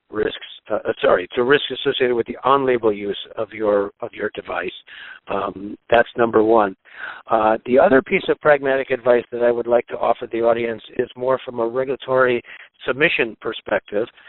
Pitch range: 115-125 Hz